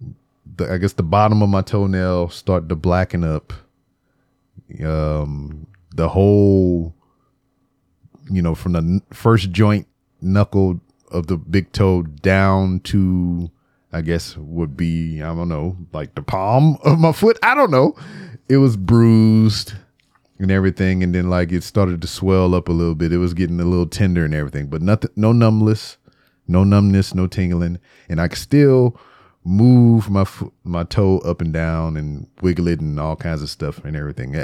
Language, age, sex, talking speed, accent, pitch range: English, 30-49, male, 165 wpm, American, 85-110 Hz